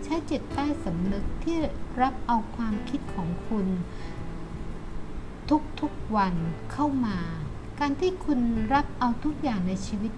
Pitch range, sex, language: 190-275 Hz, female, Thai